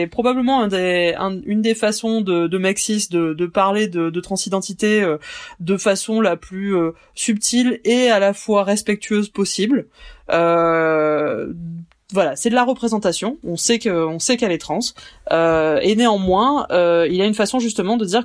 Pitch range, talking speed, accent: 175-225 Hz, 170 wpm, French